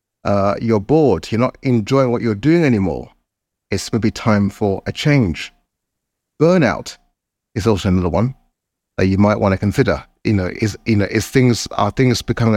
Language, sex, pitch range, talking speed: English, male, 100-120 Hz, 180 wpm